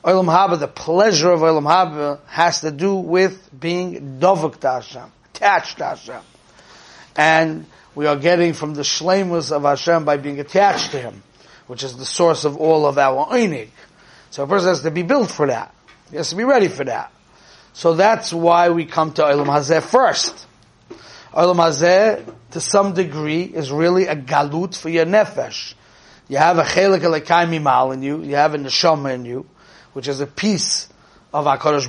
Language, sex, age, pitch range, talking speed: English, male, 30-49, 145-185 Hz, 180 wpm